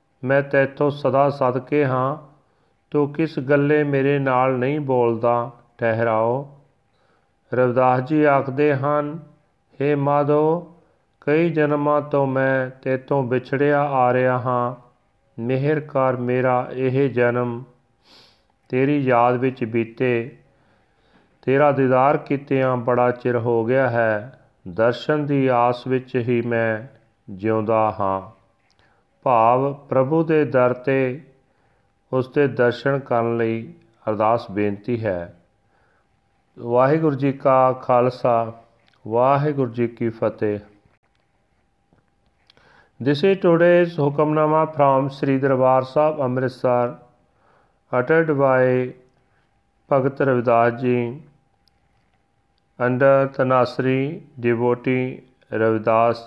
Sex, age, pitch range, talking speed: male, 40-59, 120-140 Hz, 100 wpm